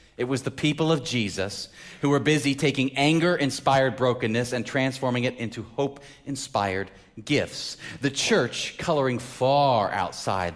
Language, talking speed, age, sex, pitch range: English, 130 wpm, 30-49, male, 95-130 Hz